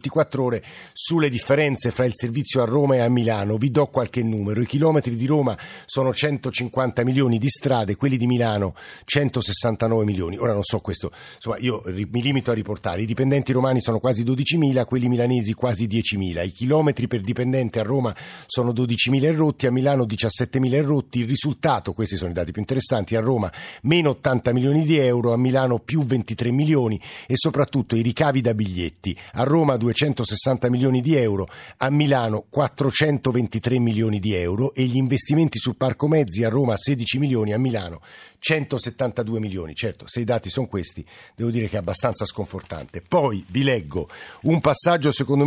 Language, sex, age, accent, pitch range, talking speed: Italian, male, 50-69, native, 110-140 Hz, 180 wpm